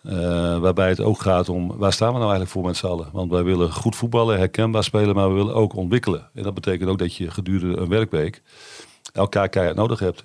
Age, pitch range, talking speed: 40-59, 90-110 Hz, 235 wpm